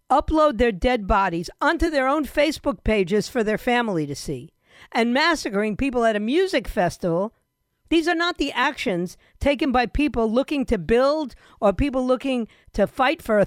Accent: American